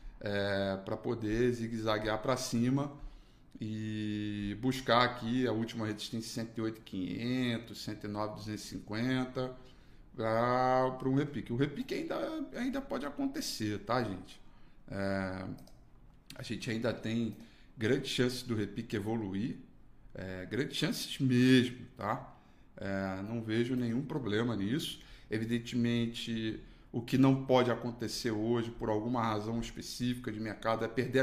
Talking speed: 110 wpm